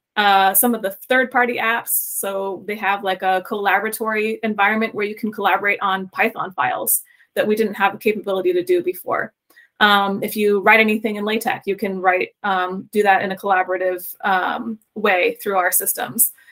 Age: 20-39